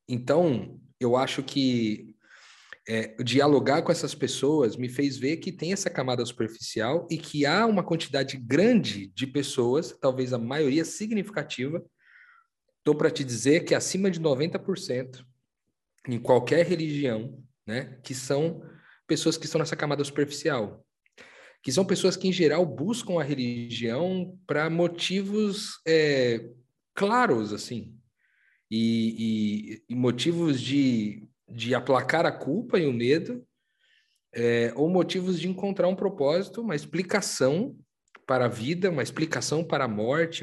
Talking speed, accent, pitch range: 135 wpm, Brazilian, 125-175 Hz